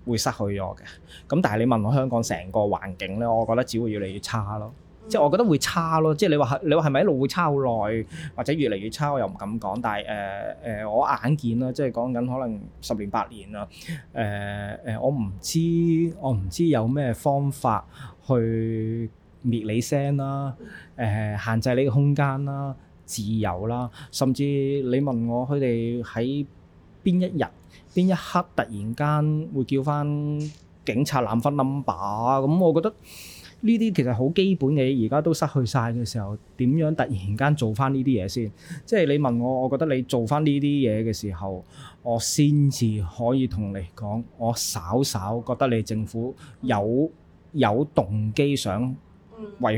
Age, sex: 20-39, male